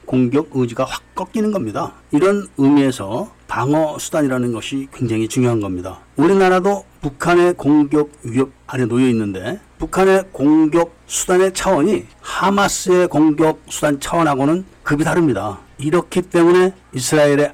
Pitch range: 130-170 Hz